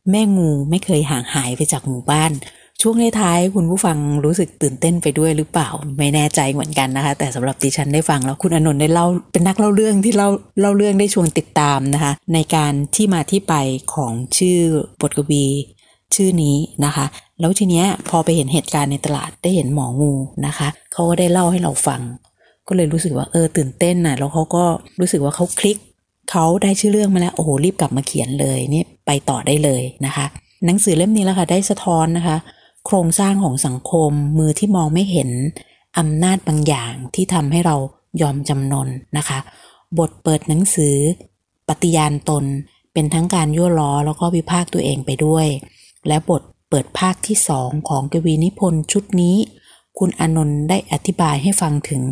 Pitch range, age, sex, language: 145-180 Hz, 30-49, female, Thai